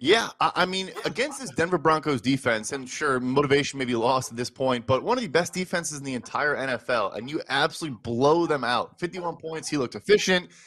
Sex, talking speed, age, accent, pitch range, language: male, 215 wpm, 20-39, American, 135-170 Hz, English